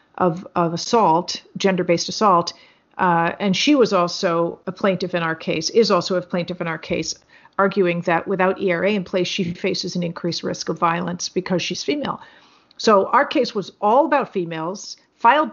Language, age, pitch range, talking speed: English, 50-69, 185-245 Hz, 180 wpm